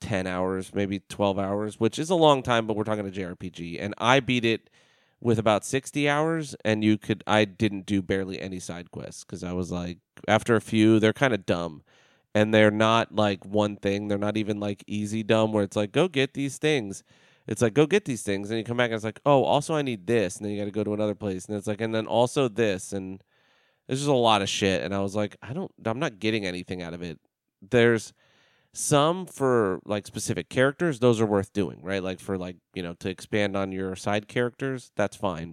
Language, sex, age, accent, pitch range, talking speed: English, male, 30-49, American, 100-120 Hz, 240 wpm